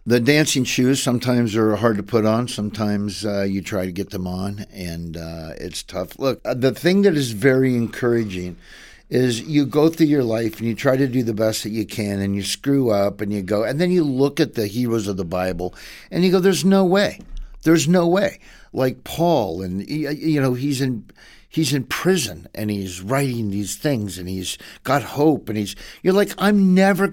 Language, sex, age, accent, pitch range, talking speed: English, male, 50-69, American, 110-170 Hz, 210 wpm